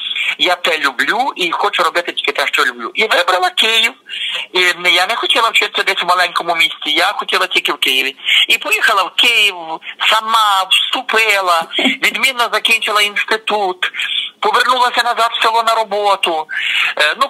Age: 50-69